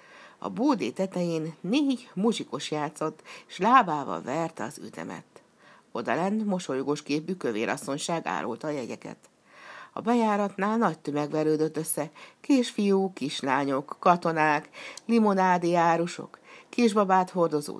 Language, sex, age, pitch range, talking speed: Hungarian, female, 60-79, 150-210 Hz, 105 wpm